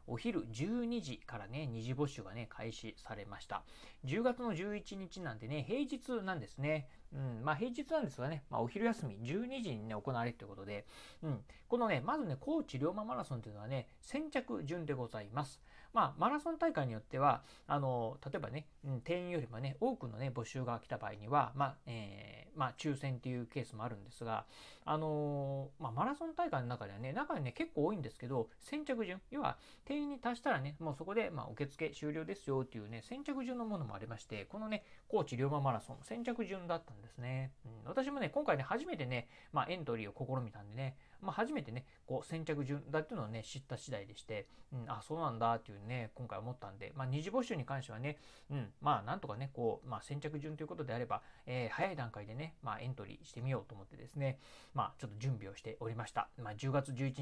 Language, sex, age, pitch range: Japanese, male, 40-59, 120-175 Hz